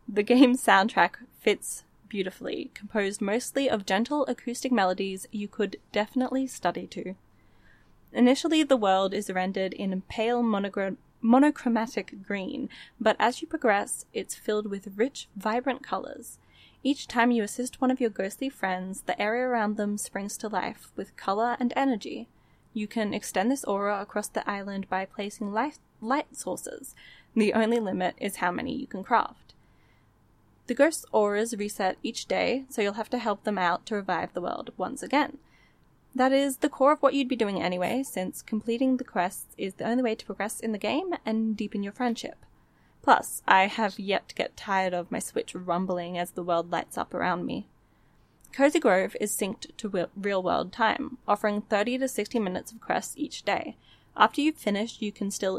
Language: English